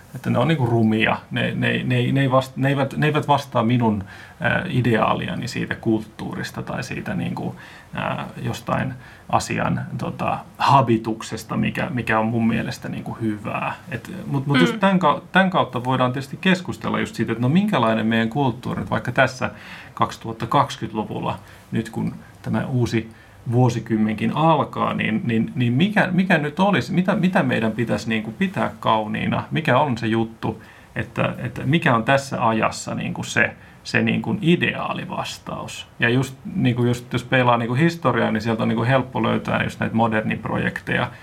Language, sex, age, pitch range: Finnish, male, 30-49, 110-135 Hz